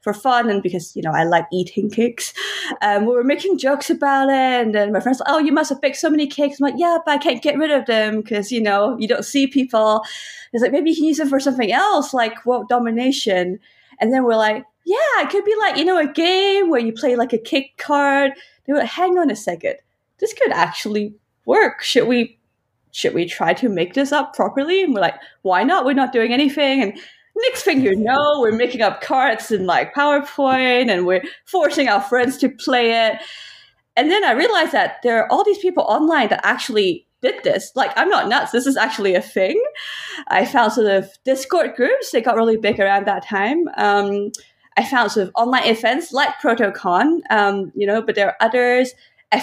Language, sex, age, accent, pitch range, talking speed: English, female, 20-39, British, 220-300 Hz, 225 wpm